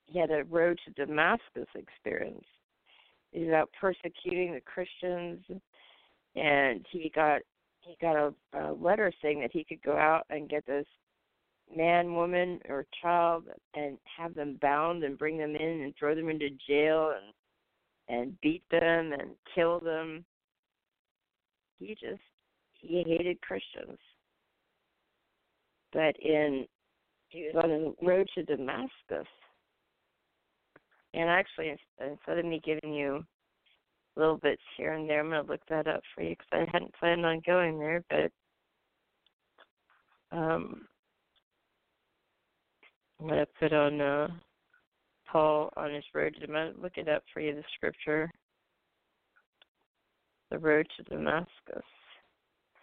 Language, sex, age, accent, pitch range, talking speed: English, female, 50-69, American, 150-170 Hz, 135 wpm